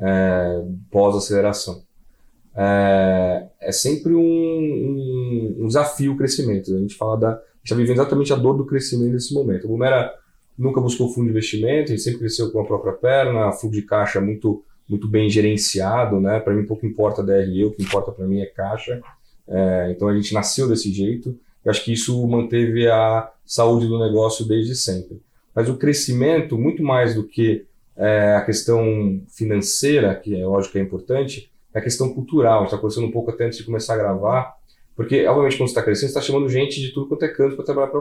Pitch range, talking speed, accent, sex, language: 105-130 Hz, 205 wpm, Brazilian, male, Portuguese